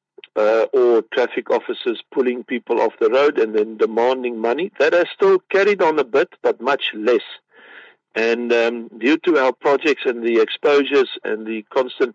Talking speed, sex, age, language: 175 wpm, male, 50-69, English